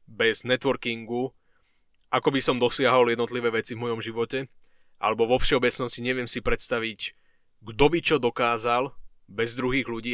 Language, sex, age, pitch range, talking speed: Slovak, male, 20-39, 115-130 Hz, 140 wpm